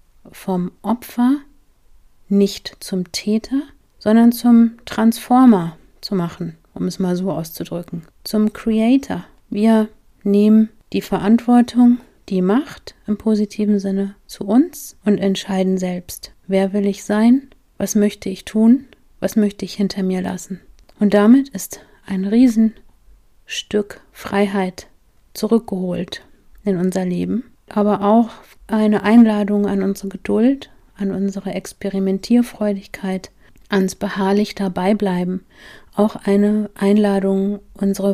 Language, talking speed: German, 115 wpm